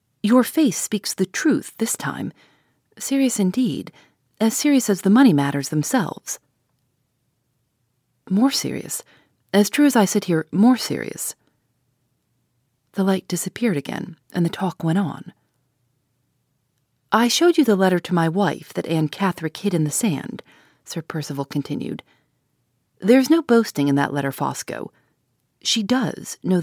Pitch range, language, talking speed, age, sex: 135-215 Hz, English, 140 wpm, 40-59, female